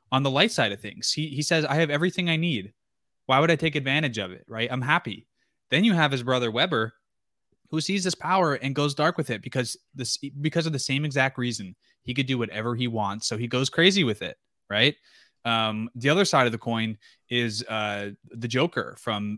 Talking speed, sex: 220 wpm, male